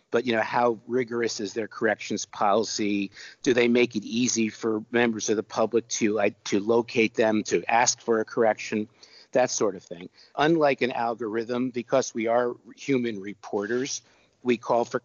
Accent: American